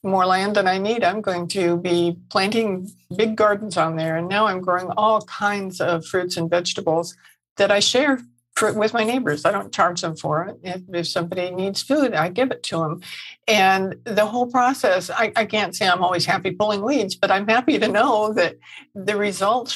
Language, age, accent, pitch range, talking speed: English, 60-79, American, 175-215 Hz, 205 wpm